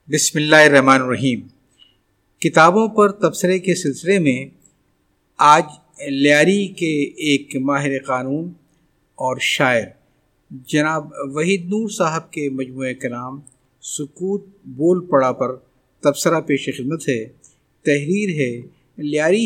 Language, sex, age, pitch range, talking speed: Urdu, male, 50-69, 130-180 Hz, 110 wpm